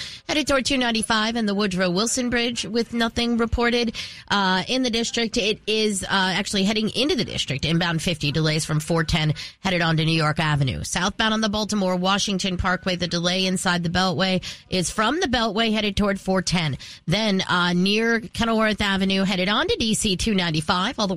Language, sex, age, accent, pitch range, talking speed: English, female, 30-49, American, 175-220 Hz, 180 wpm